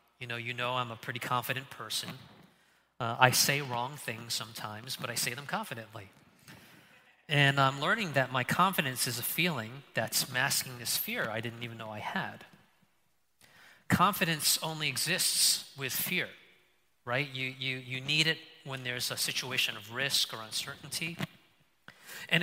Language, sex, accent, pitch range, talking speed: English, male, American, 130-180 Hz, 160 wpm